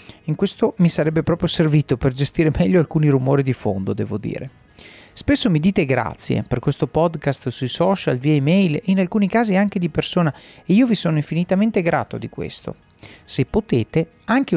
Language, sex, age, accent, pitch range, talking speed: Italian, male, 40-59, native, 150-205 Hz, 180 wpm